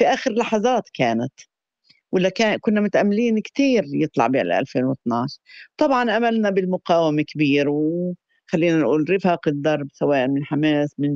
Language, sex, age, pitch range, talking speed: Arabic, female, 50-69, 140-190 Hz, 130 wpm